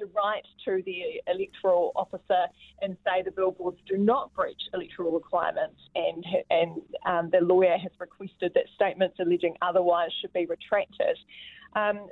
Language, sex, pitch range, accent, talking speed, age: English, female, 175-220 Hz, Australian, 145 wpm, 20-39